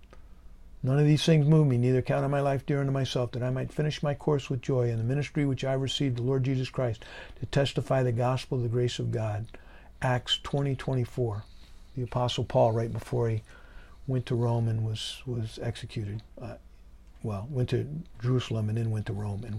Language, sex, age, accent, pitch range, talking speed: English, male, 50-69, American, 110-155 Hz, 210 wpm